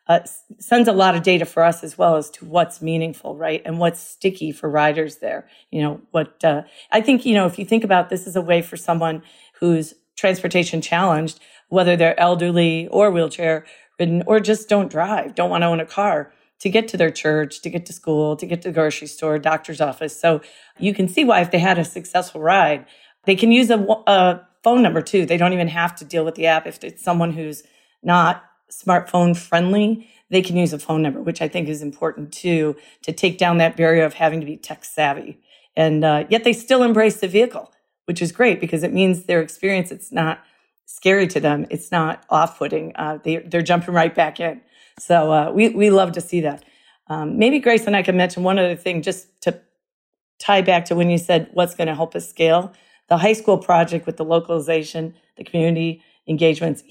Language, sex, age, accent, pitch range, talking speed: English, female, 40-59, American, 160-190 Hz, 215 wpm